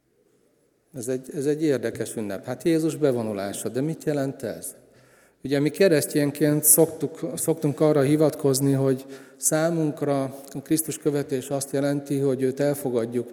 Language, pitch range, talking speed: Hungarian, 120-145 Hz, 130 wpm